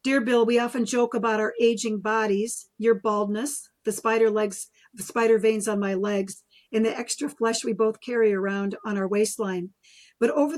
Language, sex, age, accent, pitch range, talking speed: English, female, 50-69, American, 210-230 Hz, 185 wpm